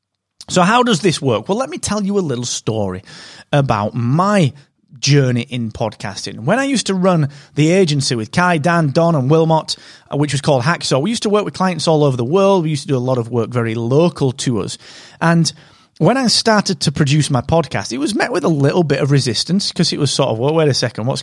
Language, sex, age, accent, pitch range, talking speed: English, male, 30-49, British, 120-165 Hz, 235 wpm